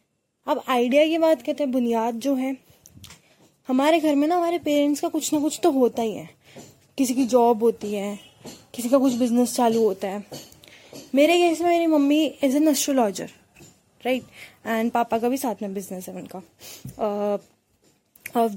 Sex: female